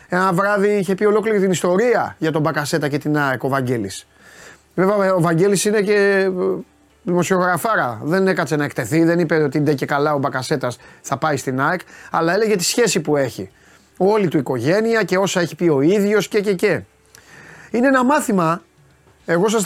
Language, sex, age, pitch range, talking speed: Greek, male, 30-49, 155-210 Hz, 185 wpm